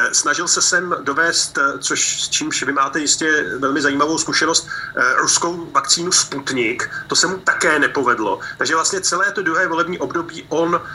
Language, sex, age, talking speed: Slovak, male, 40-59, 160 wpm